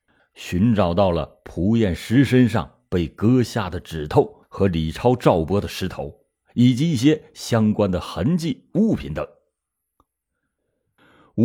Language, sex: Chinese, male